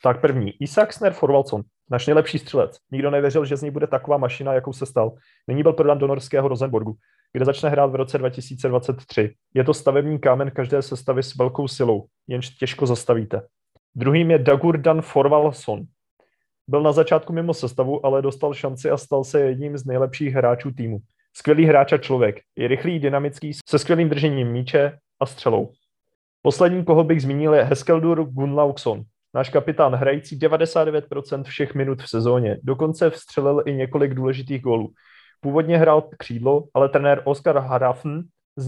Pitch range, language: 130-150 Hz, Czech